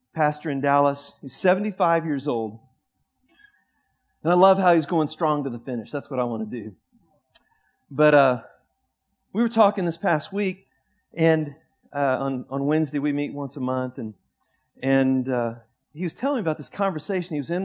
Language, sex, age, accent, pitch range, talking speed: English, male, 40-59, American, 140-190 Hz, 185 wpm